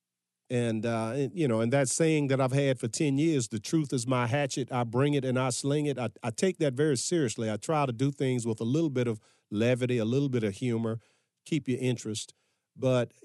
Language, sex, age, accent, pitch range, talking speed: English, male, 40-59, American, 115-145 Hz, 230 wpm